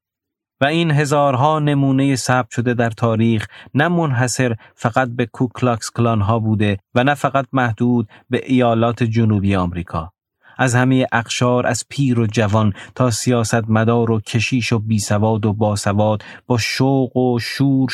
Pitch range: 110-130 Hz